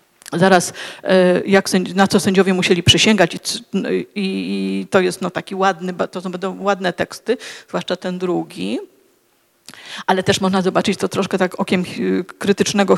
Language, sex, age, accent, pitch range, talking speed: Polish, female, 40-59, native, 185-235 Hz, 140 wpm